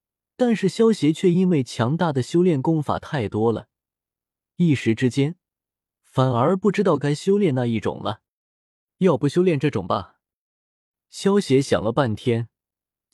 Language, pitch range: Chinese, 120-180 Hz